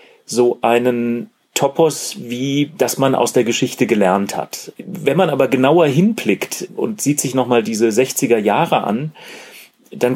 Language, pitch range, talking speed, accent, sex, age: German, 110-150 Hz, 150 wpm, German, male, 30-49